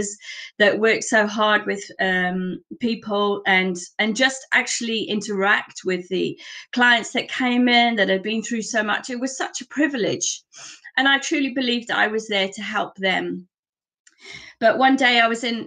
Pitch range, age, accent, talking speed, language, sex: 195-245 Hz, 30-49, British, 170 wpm, English, female